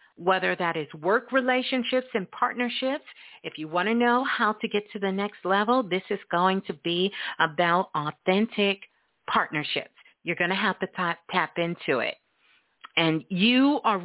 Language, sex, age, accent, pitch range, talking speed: English, female, 50-69, American, 185-240 Hz, 165 wpm